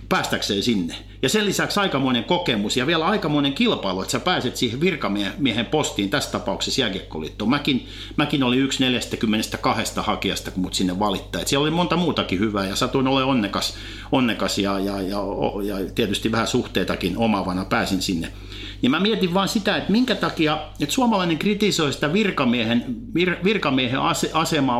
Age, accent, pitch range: 50-69, native, 105-160 Hz